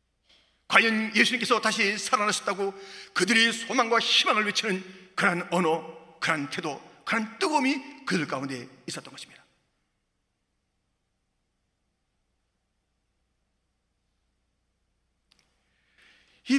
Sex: male